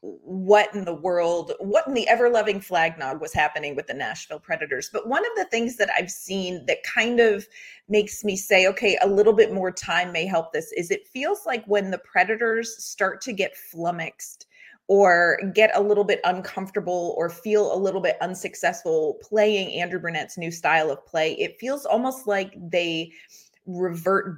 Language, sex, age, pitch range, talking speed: English, female, 30-49, 180-230 Hz, 185 wpm